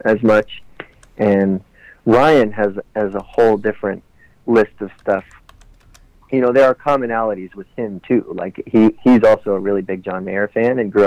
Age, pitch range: 40-59, 100-115 Hz